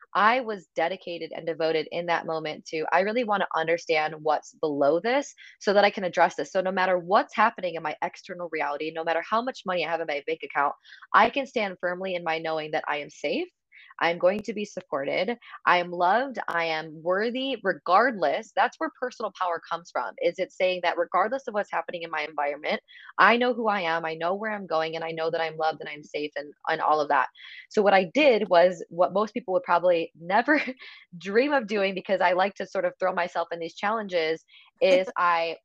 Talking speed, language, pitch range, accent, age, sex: 225 wpm, English, 165-205 Hz, American, 20-39, female